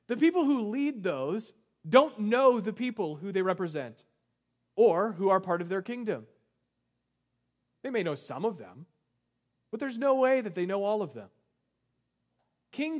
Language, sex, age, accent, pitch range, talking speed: English, male, 30-49, American, 160-235 Hz, 165 wpm